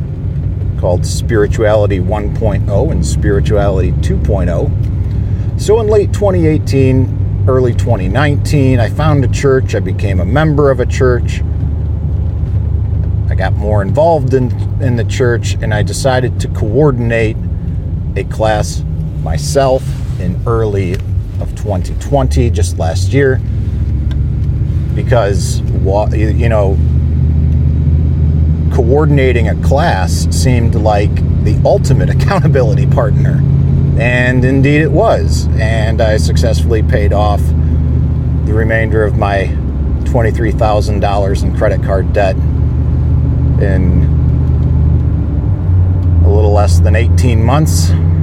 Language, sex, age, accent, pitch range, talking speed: English, male, 50-69, American, 80-105 Hz, 105 wpm